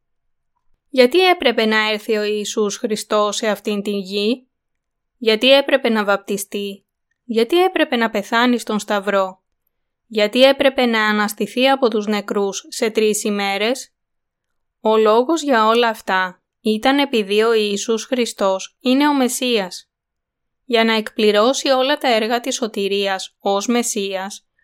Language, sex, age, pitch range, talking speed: Greek, female, 20-39, 205-250 Hz, 130 wpm